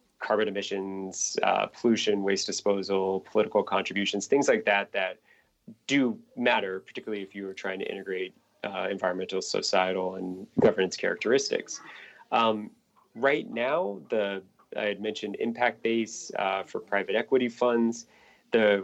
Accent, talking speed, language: American, 135 wpm, English